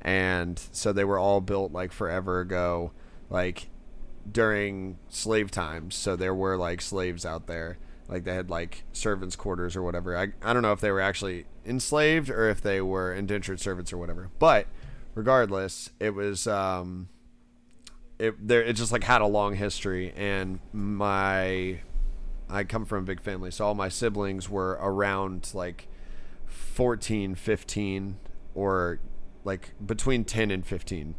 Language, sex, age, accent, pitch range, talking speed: English, male, 20-39, American, 90-105 Hz, 160 wpm